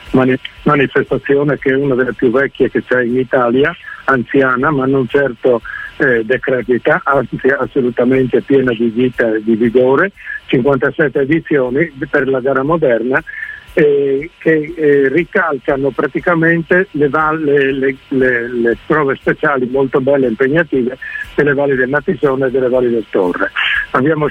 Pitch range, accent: 130-160 Hz, native